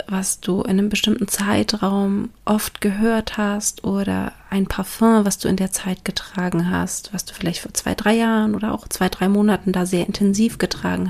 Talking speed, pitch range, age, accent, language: 190 wpm, 170-205 Hz, 30-49, German, German